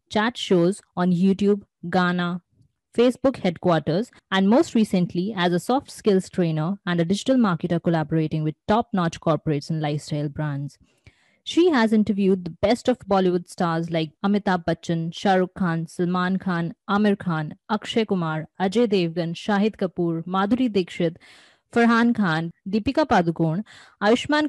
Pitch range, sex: 175-220 Hz, female